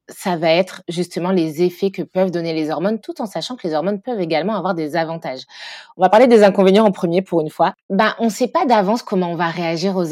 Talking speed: 255 wpm